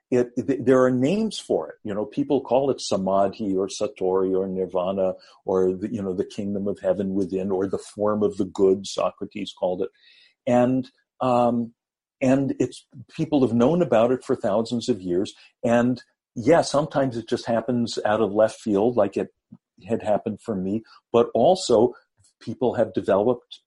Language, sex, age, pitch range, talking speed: English, male, 50-69, 100-125 Hz, 170 wpm